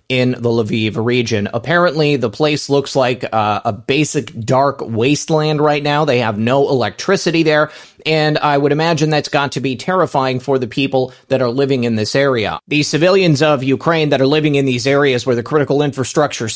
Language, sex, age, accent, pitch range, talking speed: English, male, 30-49, American, 130-170 Hz, 190 wpm